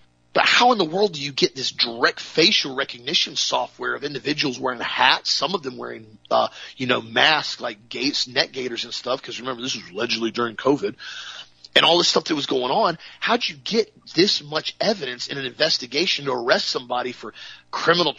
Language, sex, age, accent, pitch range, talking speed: English, male, 40-59, American, 120-175 Hz, 200 wpm